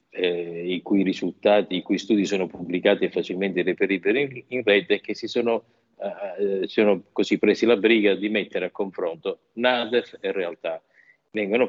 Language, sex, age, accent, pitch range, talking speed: Italian, male, 50-69, native, 95-130 Hz, 165 wpm